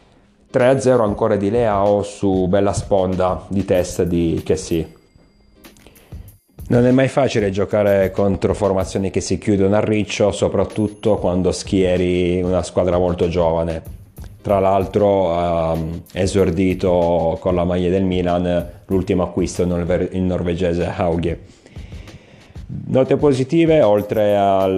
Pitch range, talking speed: 90-100 Hz, 120 wpm